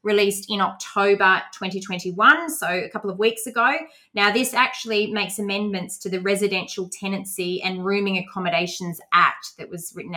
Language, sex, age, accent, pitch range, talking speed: English, female, 20-39, Australian, 185-220 Hz, 155 wpm